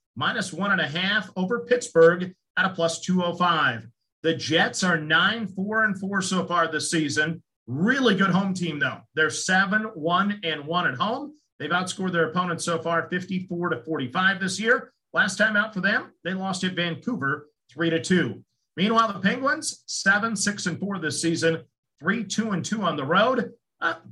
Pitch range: 165-210 Hz